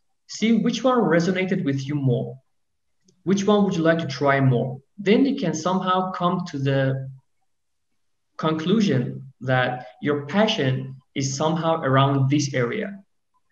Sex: male